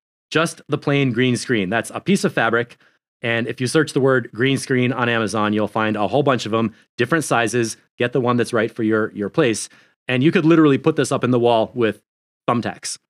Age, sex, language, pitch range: 30-49, male, English, 105-135 Hz